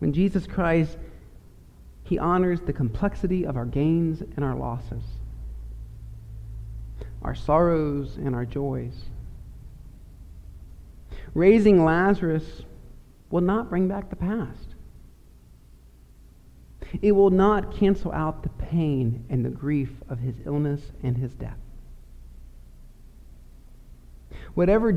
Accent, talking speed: American, 105 wpm